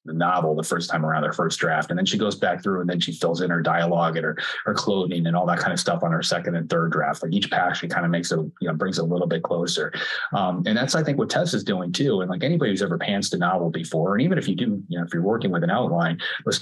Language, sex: English, male